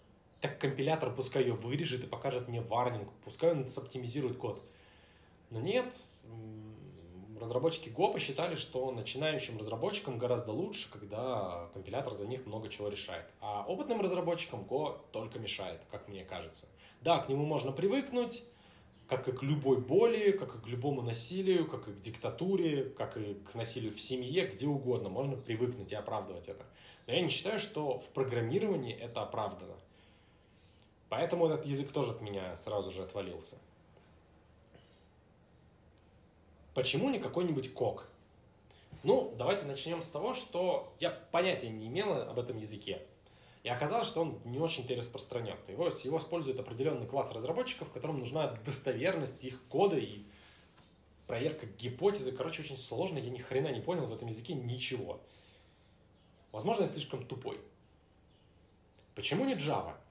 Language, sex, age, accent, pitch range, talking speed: Russian, male, 20-39, native, 105-150 Hz, 145 wpm